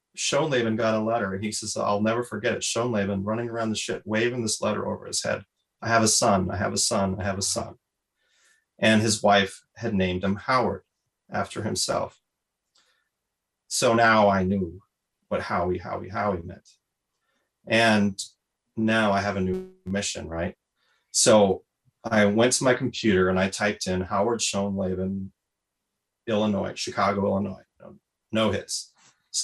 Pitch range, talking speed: 95-110 Hz, 160 wpm